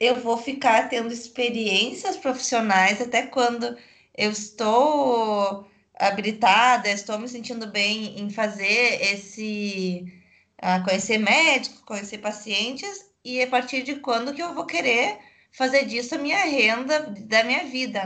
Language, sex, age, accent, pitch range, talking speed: Portuguese, female, 20-39, Brazilian, 205-255 Hz, 130 wpm